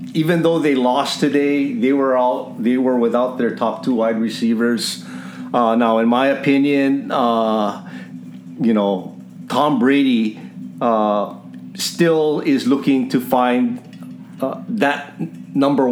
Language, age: English, 50-69